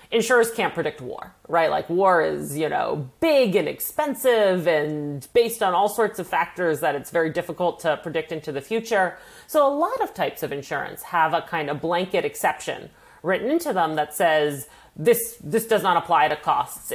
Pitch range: 155-225 Hz